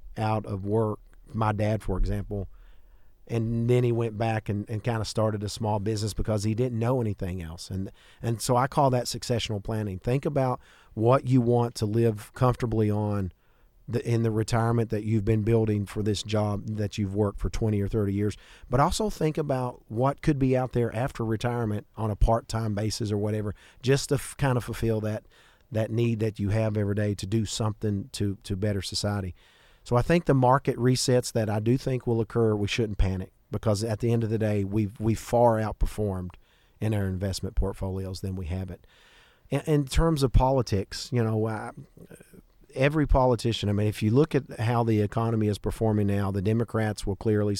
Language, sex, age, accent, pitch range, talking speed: English, male, 40-59, American, 105-115 Hz, 200 wpm